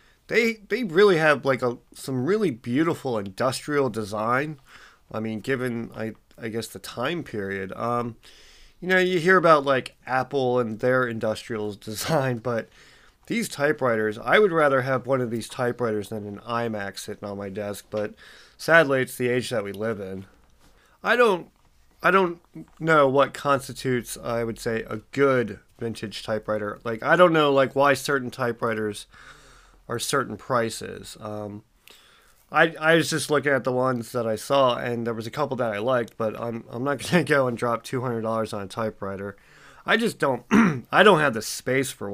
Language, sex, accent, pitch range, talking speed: English, male, American, 110-140 Hz, 180 wpm